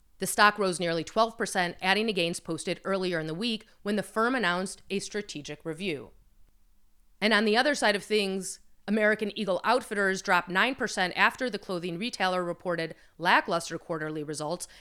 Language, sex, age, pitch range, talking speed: English, female, 30-49, 175-220 Hz, 160 wpm